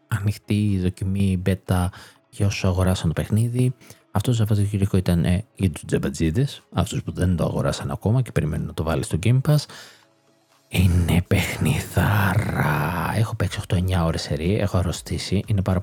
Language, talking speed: Greek, 150 wpm